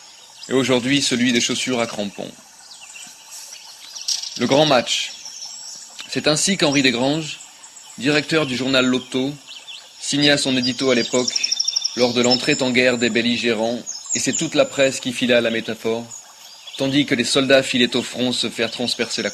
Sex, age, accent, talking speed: male, 30-49, French, 160 wpm